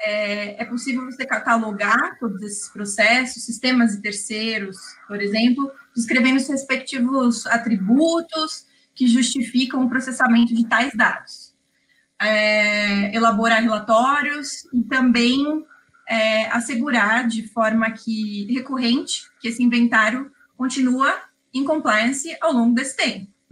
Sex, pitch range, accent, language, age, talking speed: female, 220-270 Hz, Brazilian, Portuguese, 20-39, 110 wpm